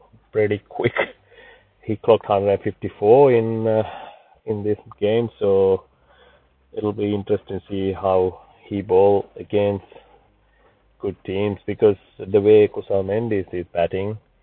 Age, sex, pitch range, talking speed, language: 30-49, male, 95-115 Hz, 120 wpm, English